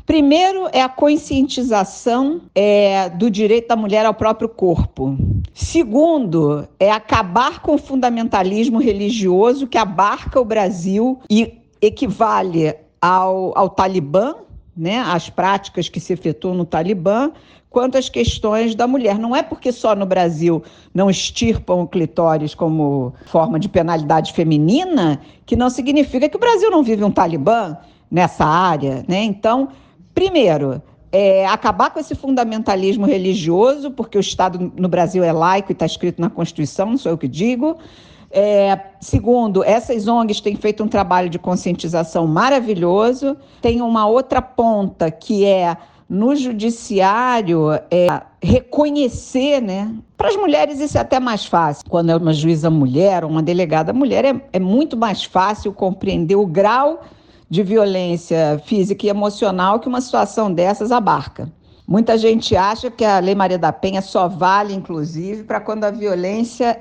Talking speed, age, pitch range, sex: 145 wpm, 50-69, 175-240 Hz, female